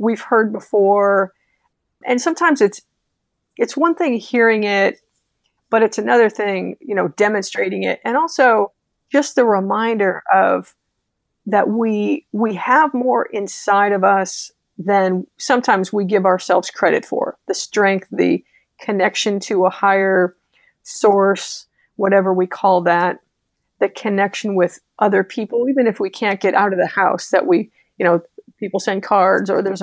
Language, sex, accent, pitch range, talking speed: English, female, American, 195-230 Hz, 150 wpm